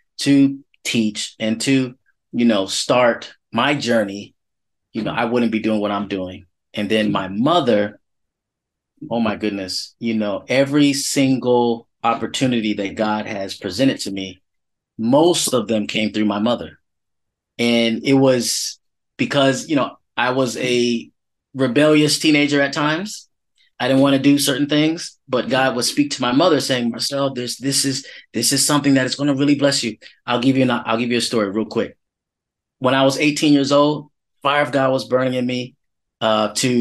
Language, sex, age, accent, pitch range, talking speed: English, male, 20-39, American, 110-140 Hz, 180 wpm